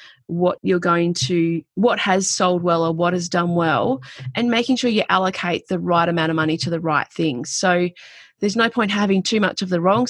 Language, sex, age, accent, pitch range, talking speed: English, female, 30-49, Australian, 170-210 Hz, 220 wpm